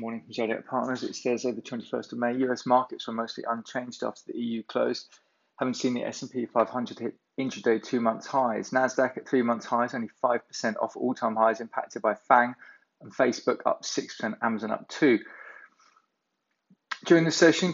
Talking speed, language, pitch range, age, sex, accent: 175 wpm, English, 115-145 Hz, 20-39, male, British